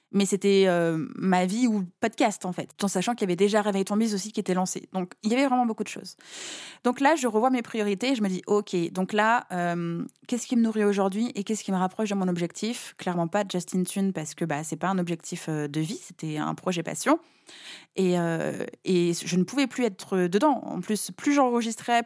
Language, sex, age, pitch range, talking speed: French, female, 20-39, 180-230 Hz, 235 wpm